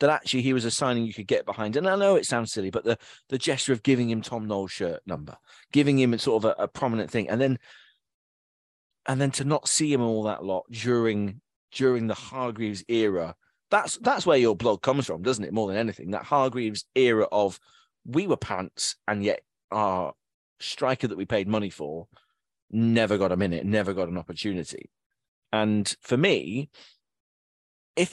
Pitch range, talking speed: 100-130 Hz, 195 wpm